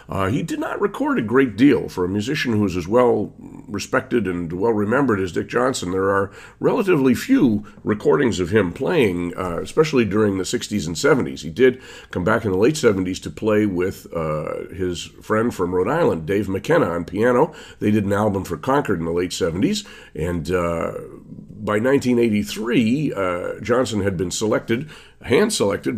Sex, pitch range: male, 85-110 Hz